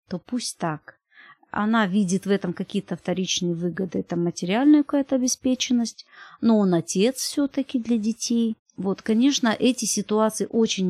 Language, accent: Russian, native